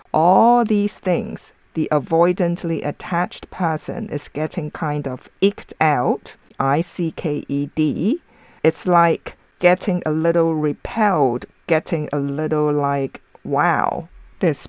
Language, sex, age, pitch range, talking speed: English, female, 50-69, 150-200 Hz, 105 wpm